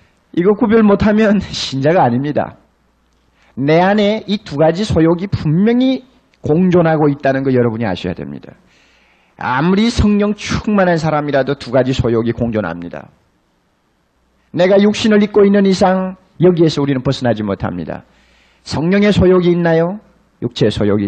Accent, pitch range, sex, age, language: native, 160-255 Hz, male, 40-59, Korean